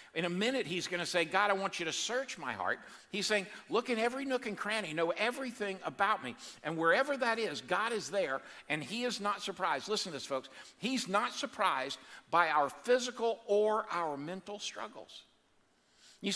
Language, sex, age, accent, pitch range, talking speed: English, male, 60-79, American, 160-220 Hz, 200 wpm